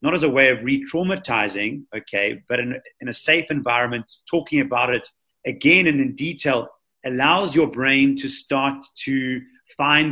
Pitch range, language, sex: 125-145 Hz, English, male